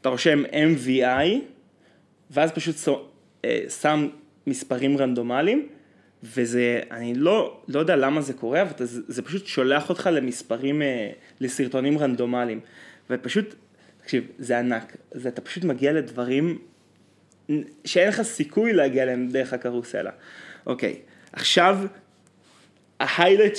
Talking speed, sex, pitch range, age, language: 110 wpm, male, 125-155 Hz, 20-39, Hebrew